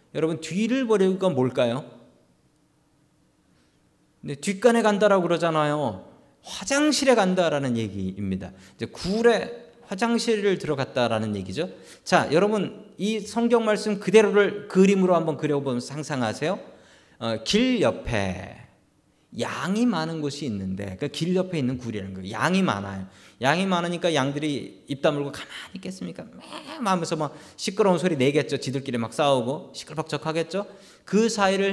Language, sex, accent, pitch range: Korean, male, native, 130-200 Hz